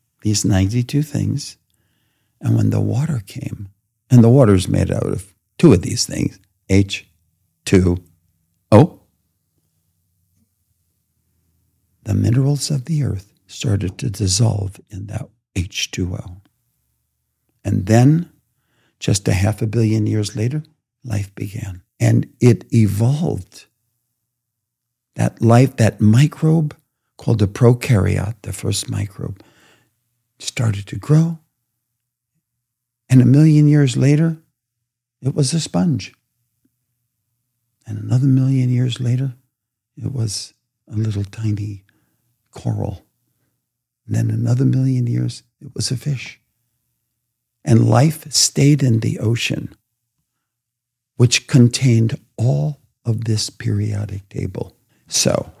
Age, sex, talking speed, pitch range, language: 60-79, male, 110 wpm, 105-130 Hz, English